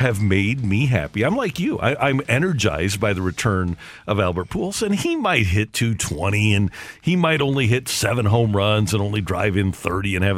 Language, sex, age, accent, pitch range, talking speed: English, male, 50-69, American, 100-140 Hz, 210 wpm